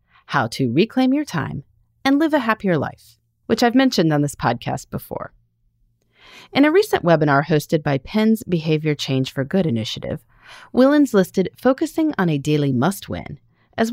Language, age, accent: English, 30-49, American